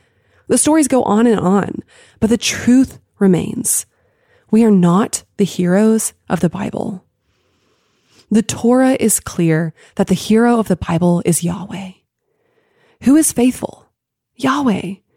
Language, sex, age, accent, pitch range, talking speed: English, female, 20-39, American, 185-270 Hz, 135 wpm